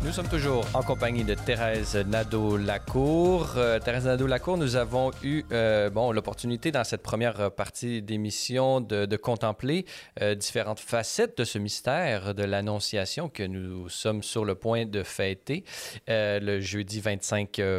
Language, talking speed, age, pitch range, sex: French, 150 wpm, 30-49, 110-140 Hz, male